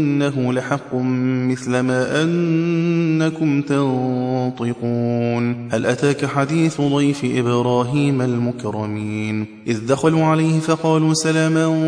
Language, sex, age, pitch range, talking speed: Persian, male, 20-39, 125-160 Hz, 85 wpm